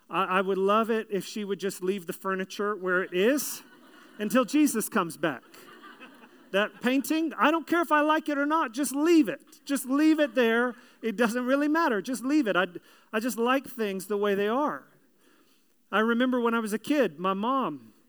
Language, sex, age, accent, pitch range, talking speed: English, male, 40-59, American, 205-285 Hz, 200 wpm